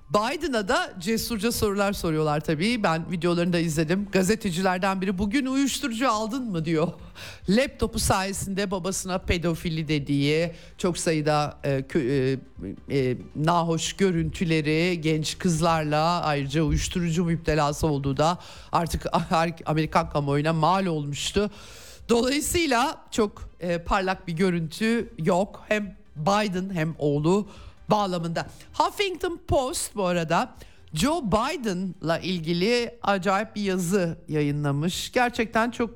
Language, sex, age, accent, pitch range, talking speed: Turkish, male, 50-69, native, 160-215 Hz, 110 wpm